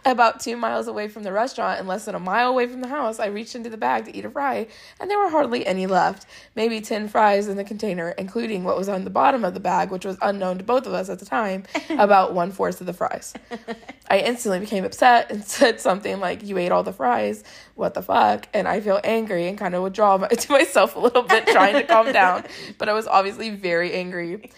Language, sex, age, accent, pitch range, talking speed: English, female, 20-39, American, 185-240 Hz, 245 wpm